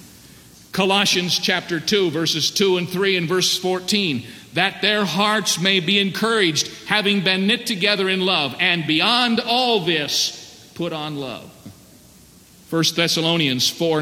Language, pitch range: English, 135-195 Hz